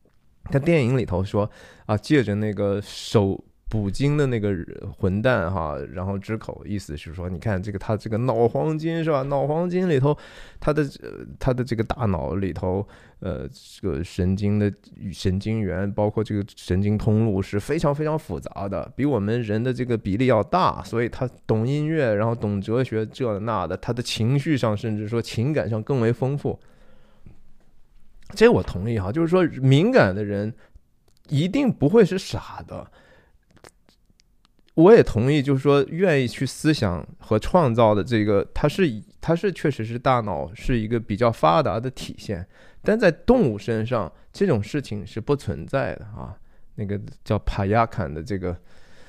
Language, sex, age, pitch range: Chinese, male, 20-39, 100-135 Hz